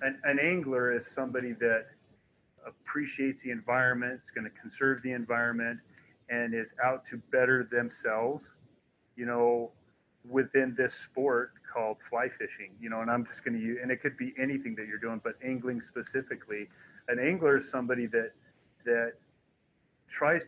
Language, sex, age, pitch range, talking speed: English, male, 30-49, 115-130 Hz, 160 wpm